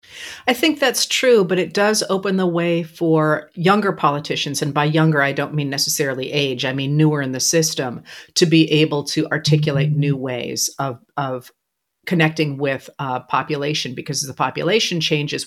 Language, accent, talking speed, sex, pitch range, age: English, American, 170 wpm, female, 145-180 Hz, 50-69